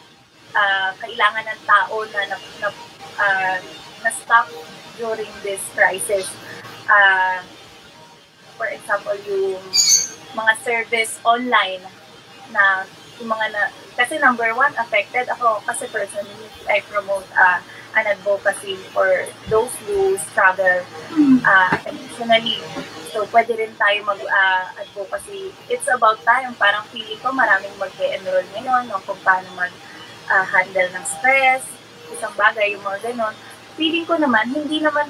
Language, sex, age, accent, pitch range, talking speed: English, female, 20-39, Filipino, 190-255 Hz, 125 wpm